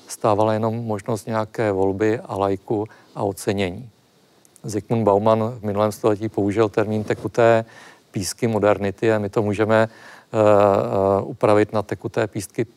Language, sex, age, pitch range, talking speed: Czech, male, 40-59, 100-115 Hz, 130 wpm